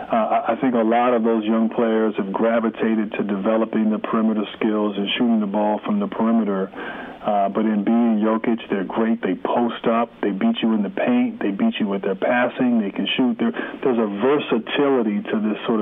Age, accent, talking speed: 40-59, American, 205 wpm